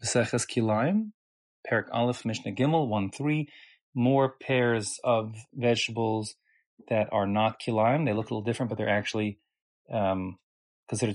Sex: male